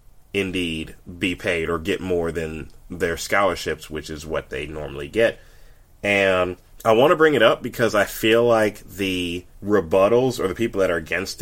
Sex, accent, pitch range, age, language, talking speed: male, American, 85-110 Hz, 30-49, English, 180 wpm